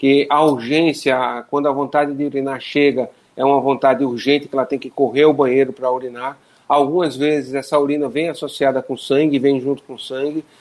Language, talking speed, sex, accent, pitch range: Portuguese, 190 wpm, male, Brazilian, 130-150 Hz